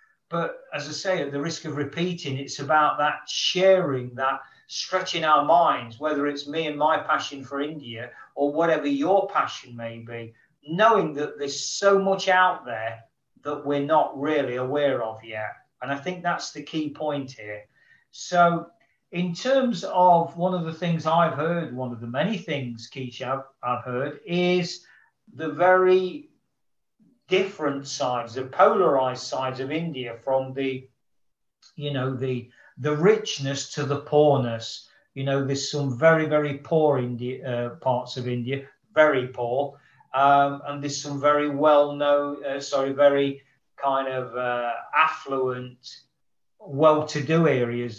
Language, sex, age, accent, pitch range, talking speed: English, male, 40-59, British, 130-165 Hz, 155 wpm